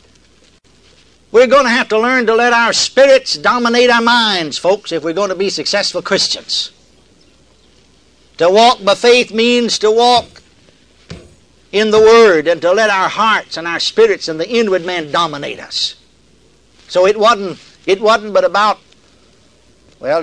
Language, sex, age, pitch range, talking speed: English, male, 60-79, 165-240 Hz, 155 wpm